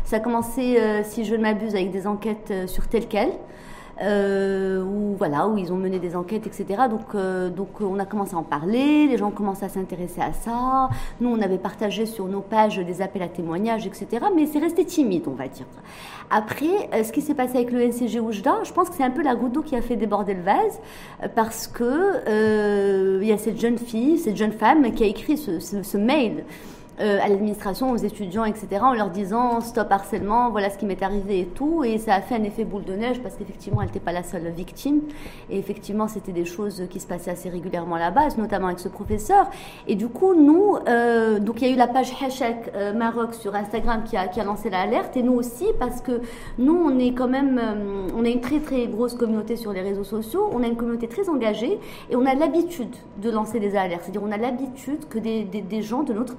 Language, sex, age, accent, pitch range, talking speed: French, female, 40-59, French, 200-250 Hz, 235 wpm